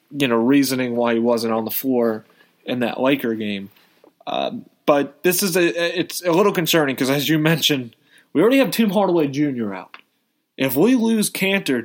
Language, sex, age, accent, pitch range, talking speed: English, male, 20-39, American, 130-160 Hz, 185 wpm